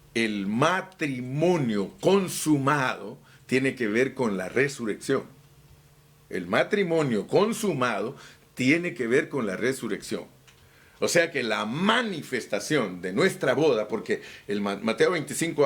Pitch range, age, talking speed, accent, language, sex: 115-185 Hz, 50-69, 110 wpm, Mexican, Spanish, male